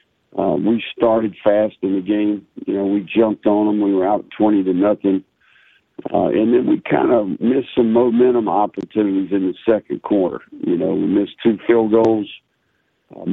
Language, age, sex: English, 60-79, male